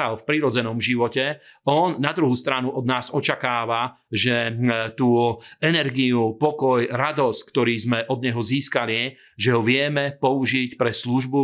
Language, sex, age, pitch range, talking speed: Slovak, male, 40-59, 120-135 Hz, 135 wpm